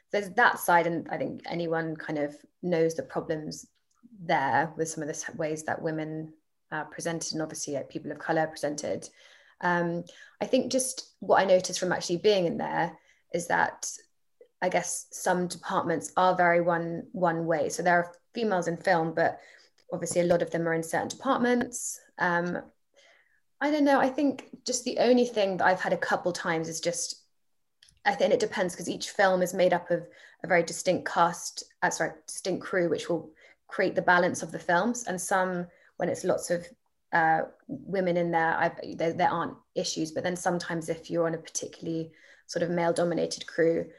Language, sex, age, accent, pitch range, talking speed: English, female, 20-39, British, 165-195 Hz, 190 wpm